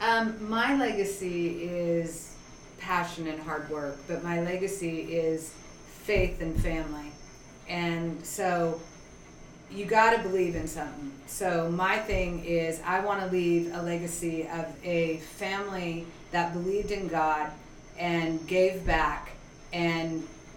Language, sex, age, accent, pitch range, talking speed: English, female, 40-59, American, 165-190 Hz, 130 wpm